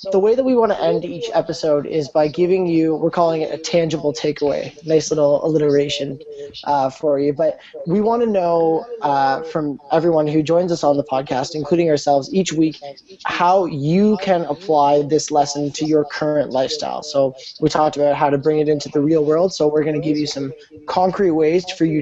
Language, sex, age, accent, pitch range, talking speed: English, male, 20-39, American, 145-170 Hz, 205 wpm